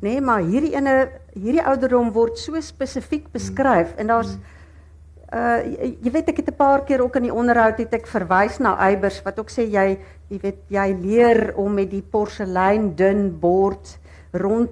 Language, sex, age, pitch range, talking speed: Dutch, female, 60-79, 190-230 Hz, 185 wpm